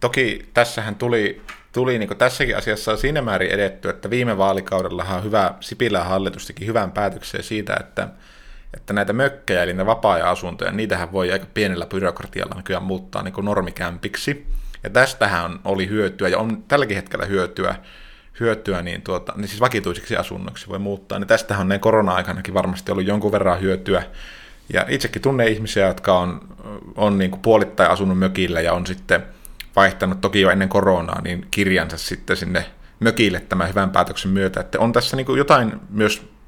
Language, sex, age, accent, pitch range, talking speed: Finnish, male, 20-39, native, 95-110 Hz, 165 wpm